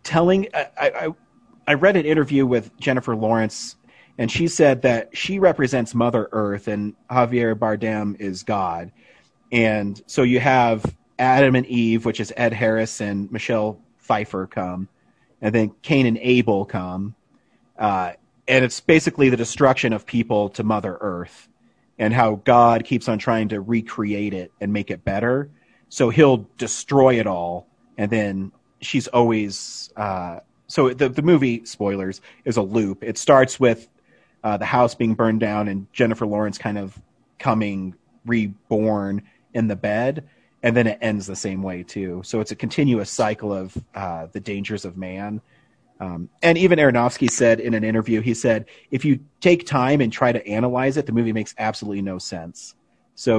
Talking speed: 165 wpm